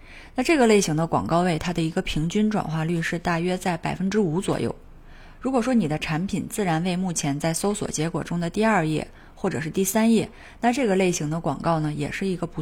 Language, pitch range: Chinese, 155-200 Hz